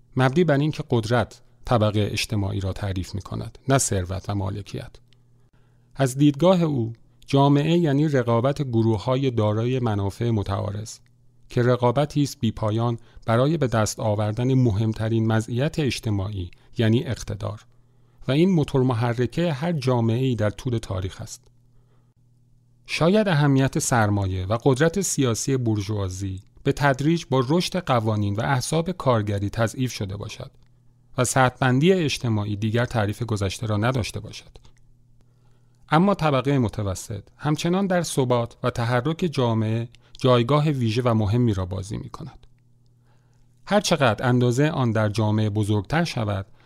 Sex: male